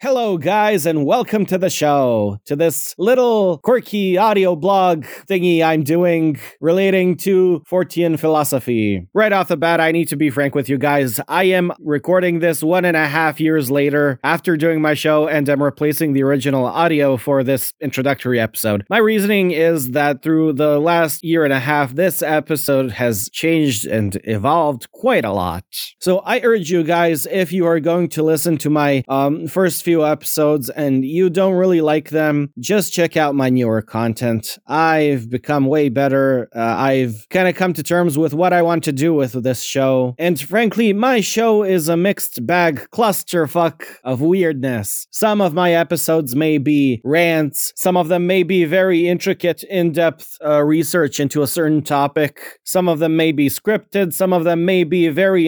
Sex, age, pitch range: male, 30-49, 145-180 Hz